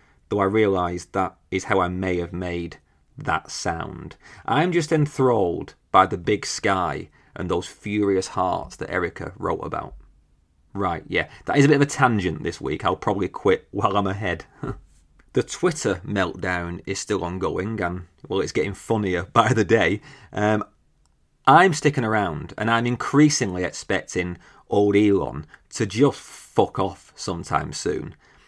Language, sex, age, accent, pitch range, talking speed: English, male, 30-49, British, 90-125 Hz, 155 wpm